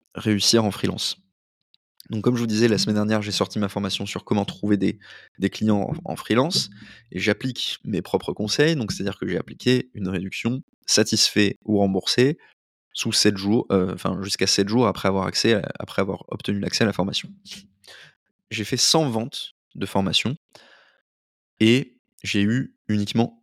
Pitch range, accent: 100-115 Hz, French